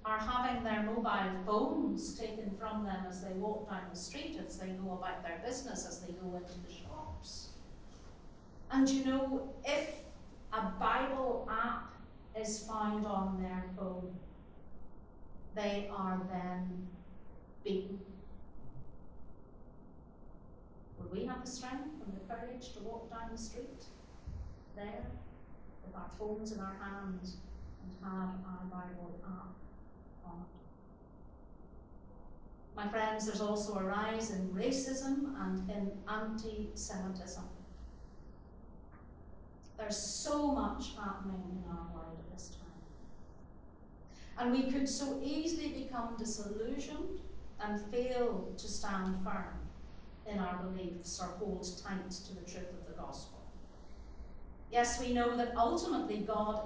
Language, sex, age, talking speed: English, female, 40-59, 125 wpm